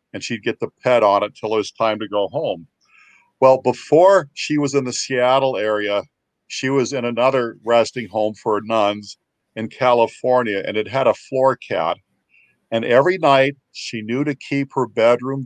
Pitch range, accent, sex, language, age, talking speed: 110-130 Hz, American, male, English, 50-69, 185 wpm